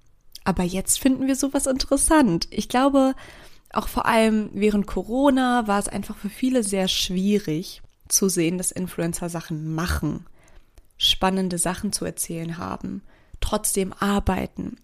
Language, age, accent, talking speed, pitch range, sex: German, 20-39, German, 135 wpm, 185-230 Hz, female